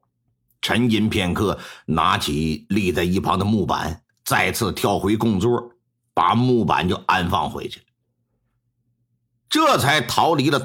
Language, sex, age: Chinese, male, 50-69